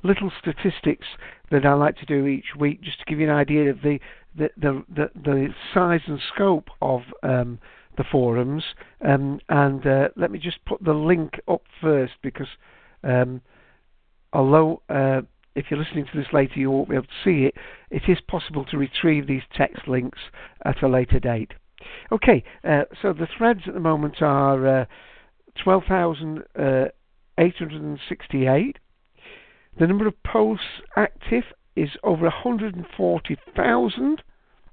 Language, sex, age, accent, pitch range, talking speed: English, male, 60-79, British, 140-175 Hz, 150 wpm